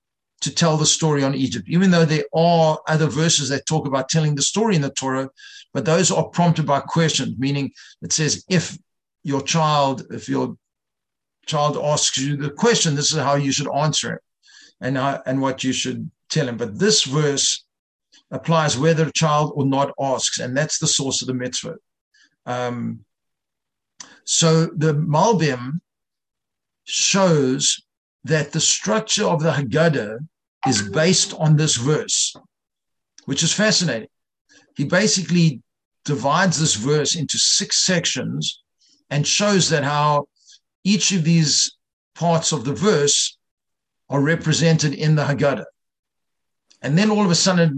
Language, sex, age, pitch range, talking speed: English, male, 60-79, 140-165 Hz, 155 wpm